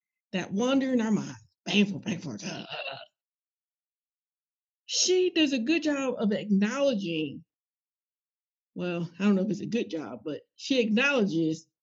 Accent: American